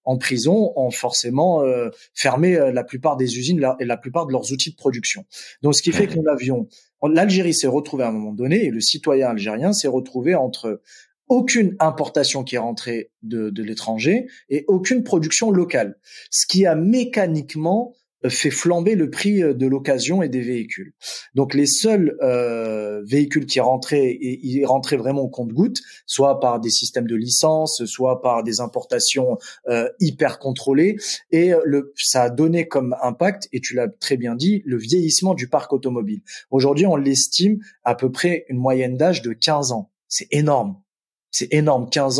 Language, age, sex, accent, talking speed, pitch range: French, 30-49, male, French, 180 wpm, 125-175 Hz